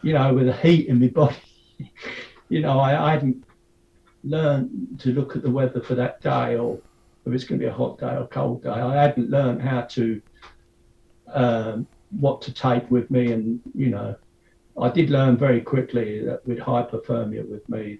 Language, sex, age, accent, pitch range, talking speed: English, male, 50-69, British, 110-125 Hz, 195 wpm